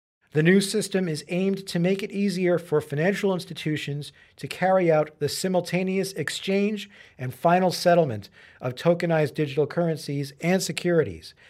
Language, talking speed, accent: English, 140 wpm, American